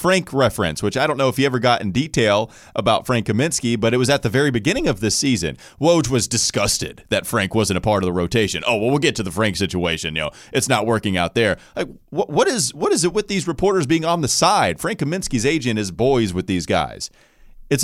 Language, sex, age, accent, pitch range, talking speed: English, male, 30-49, American, 90-130 Hz, 245 wpm